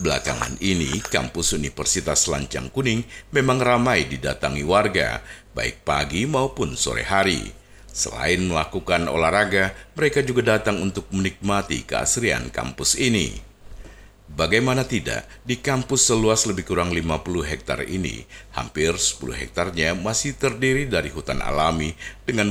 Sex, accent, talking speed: male, native, 120 wpm